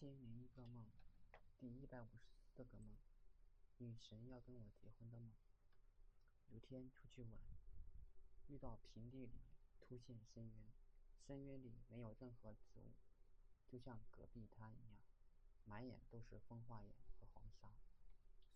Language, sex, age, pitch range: Chinese, male, 20-39, 100-120 Hz